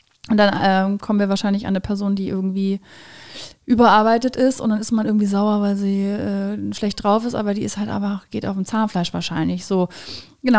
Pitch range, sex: 195-240 Hz, female